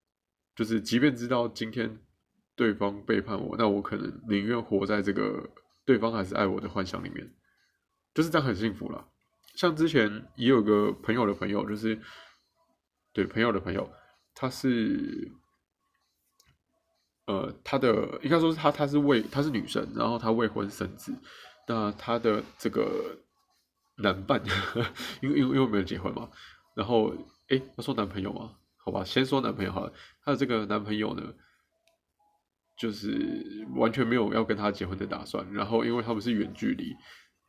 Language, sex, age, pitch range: Chinese, male, 20-39, 105-130 Hz